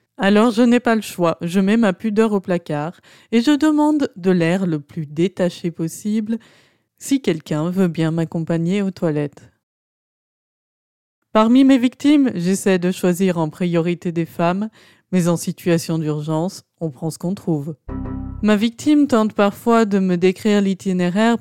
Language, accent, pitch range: French, French, 170-215 Hz